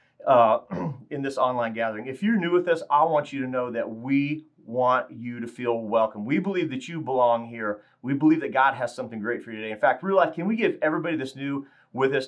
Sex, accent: male, American